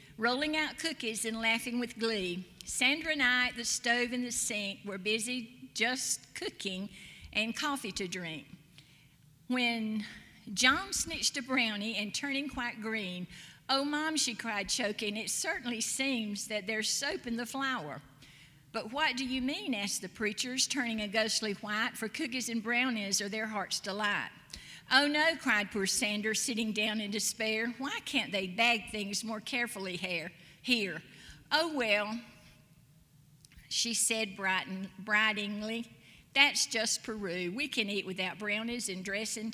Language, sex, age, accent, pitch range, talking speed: English, female, 50-69, American, 200-245 Hz, 155 wpm